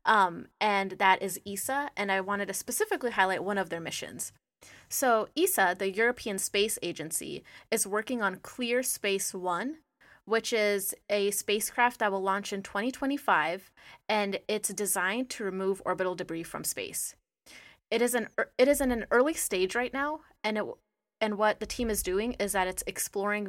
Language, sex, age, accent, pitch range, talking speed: English, female, 20-39, American, 190-230 Hz, 180 wpm